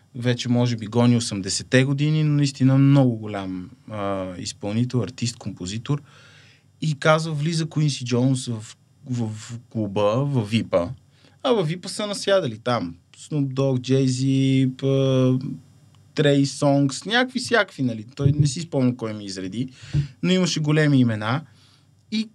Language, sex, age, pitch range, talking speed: Bulgarian, male, 20-39, 125-180 Hz, 140 wpm